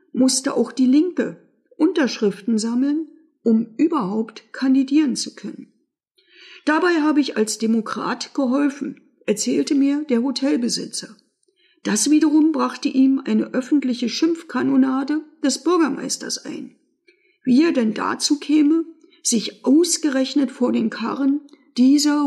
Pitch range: 255-315 Hz